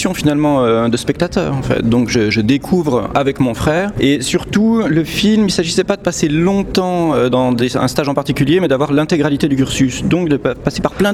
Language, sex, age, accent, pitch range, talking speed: French, male, 40-59, French, 135-175 Hz, 215 wpm